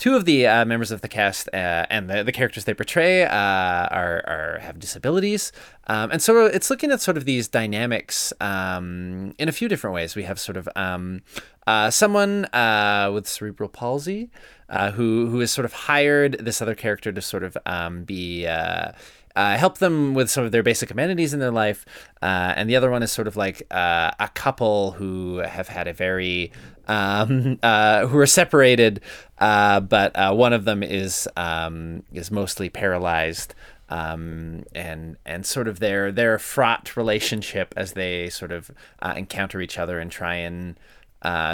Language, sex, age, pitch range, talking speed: English, male, 20-39, 90-125 Hz, 185 wpm